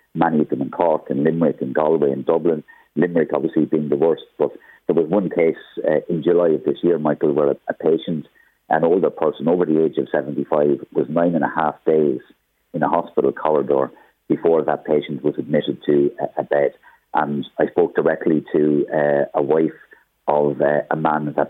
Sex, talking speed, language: male, 200 wpm, English